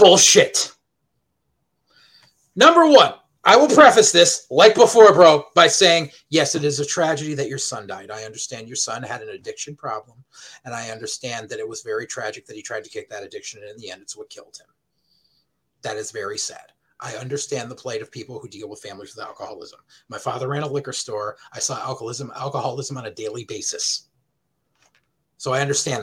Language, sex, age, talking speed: English, male, 30-49, 195 wpm